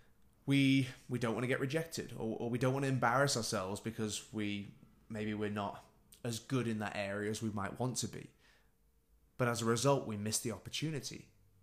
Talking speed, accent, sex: 200 wpm, British, male